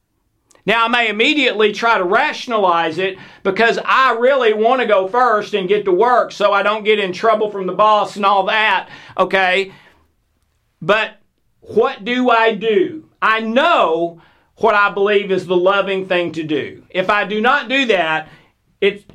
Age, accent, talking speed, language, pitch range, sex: 50-69, American, 170 wpm, English, 185-230 Hz, male